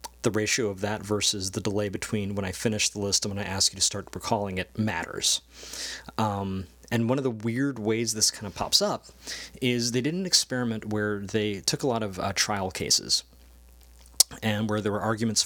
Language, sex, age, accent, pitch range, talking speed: English, male, 30-49, American, 95-115 Hz, 210 wpm